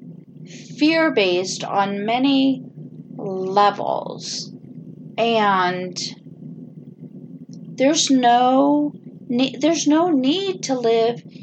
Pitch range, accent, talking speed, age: 205-260 Hz, American, 75 wpm, 40-59